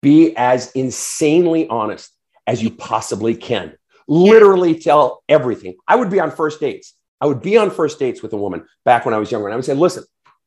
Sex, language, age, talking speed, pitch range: male, English, 40-59, 205 wpm, 145-215 Hz